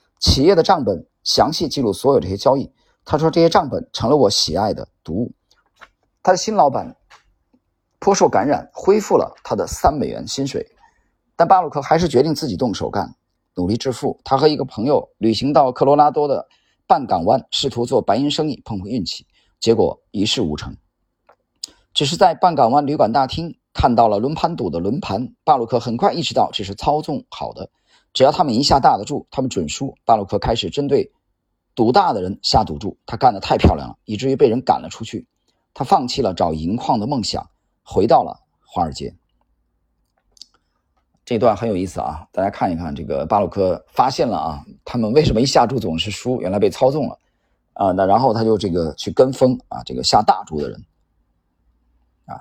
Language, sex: Chinese, male